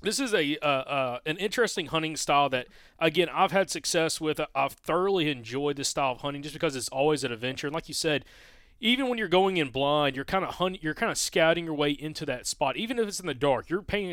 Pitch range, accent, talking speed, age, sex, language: 135-165 Hz, American, 250 wpm, 30-49, male, English